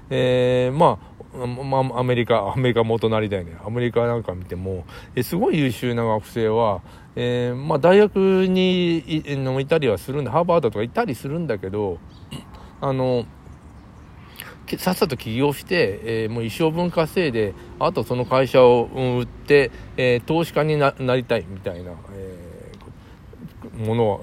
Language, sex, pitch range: Japanese, male, 100-150 Hz